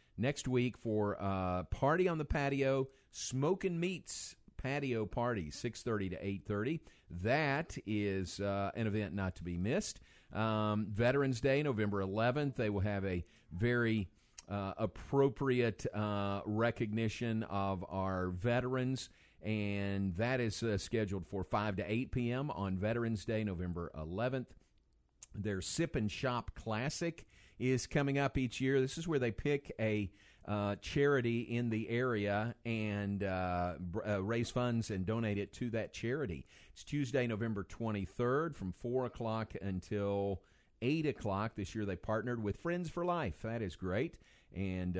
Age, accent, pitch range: 50-69, American, 95-125 Hz